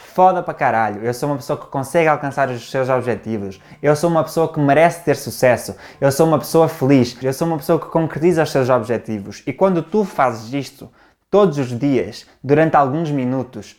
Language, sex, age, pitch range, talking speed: Portuguese, male, 20-39, 120-155 Hz, 200 wpm